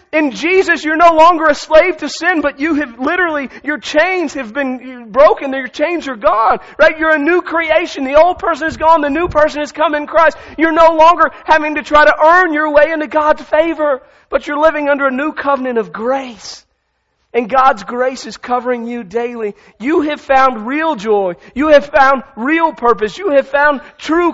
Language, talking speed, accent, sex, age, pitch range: English, 200 wpm, American, male, 40-59, 205-300 Hz